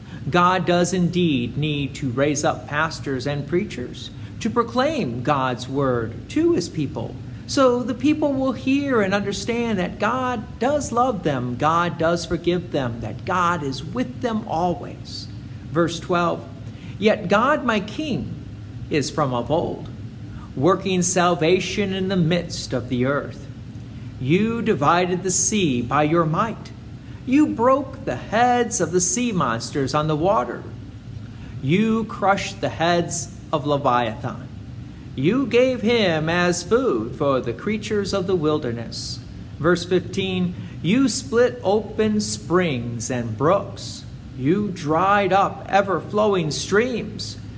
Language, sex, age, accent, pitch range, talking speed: English, male, 50-69, American, 125-200 Hz, 130 wpm